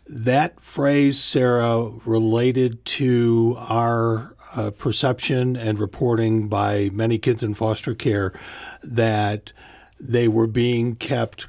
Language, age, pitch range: English, 50-69, 110-130 Hz